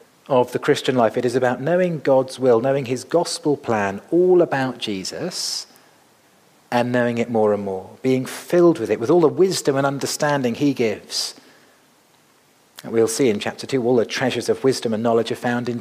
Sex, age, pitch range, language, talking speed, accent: male, 40-59, 120-160 Hz, English, 195 wpm, British